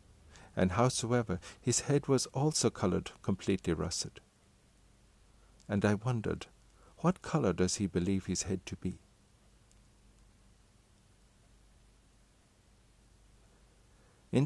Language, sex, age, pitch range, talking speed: English, male, 60-79, 95-115 Hz, 90 wpm